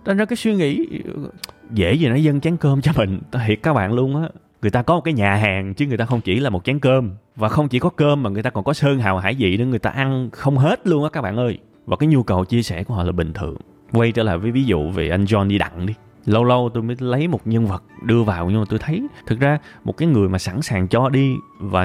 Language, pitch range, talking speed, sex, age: Vietnamese, 105-160 Hz, 290 wpm, male, 20-39